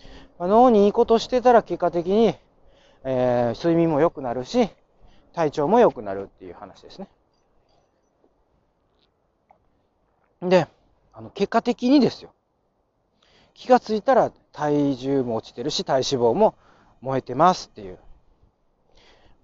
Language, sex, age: Japanese, male, 40-59